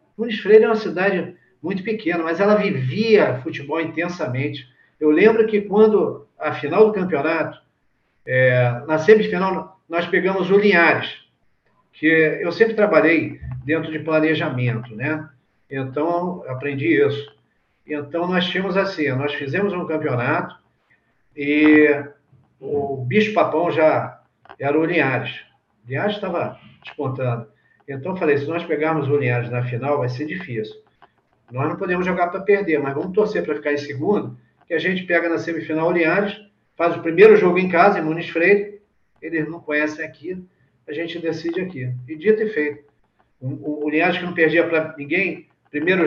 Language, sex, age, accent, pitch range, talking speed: Portuguese, male, 50-69, Brazilian, 145-185 Hz, 160 wpm